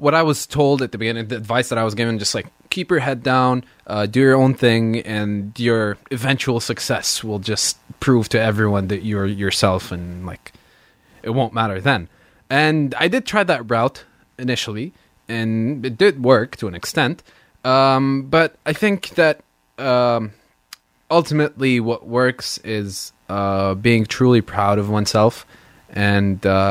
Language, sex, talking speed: English, male, 165 wpm